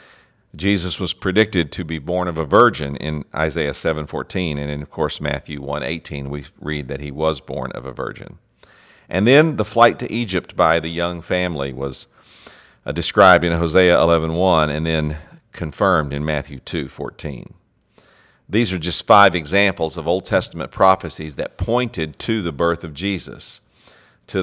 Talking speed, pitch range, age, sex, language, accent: 160 wpm, 75-95 Hz, 50-69, male, English, American